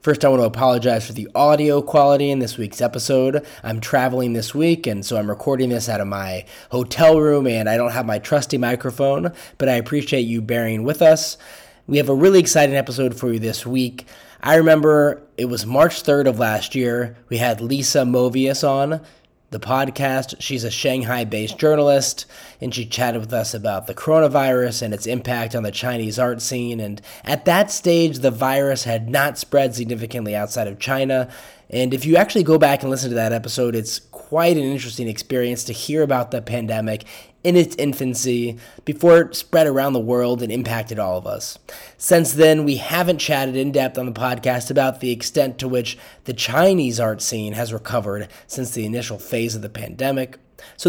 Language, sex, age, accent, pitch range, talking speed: English, male, 20-39, American, 120-145 Hz, 195 wpm